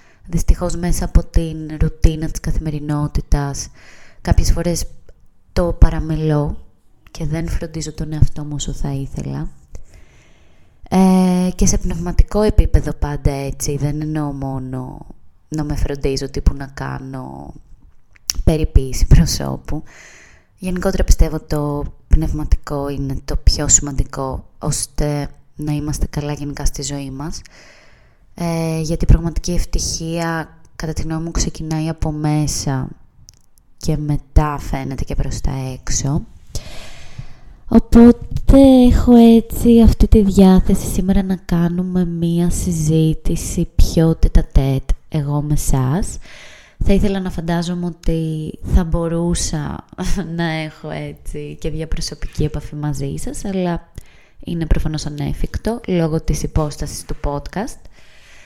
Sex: female